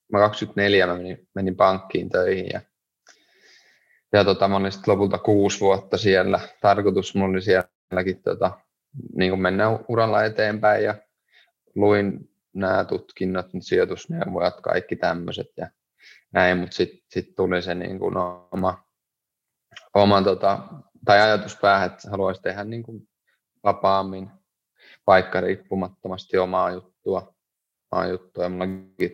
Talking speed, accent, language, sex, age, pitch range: 115 wpm, native, Finnish, male, 20-39, 95-105 Hz